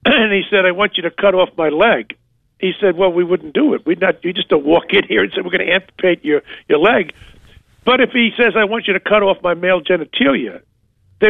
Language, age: English, 50-69